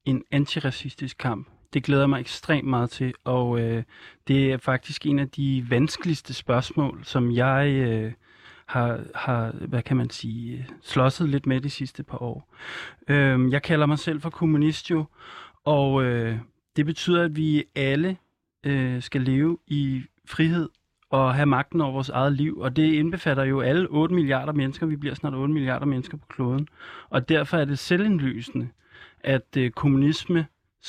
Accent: native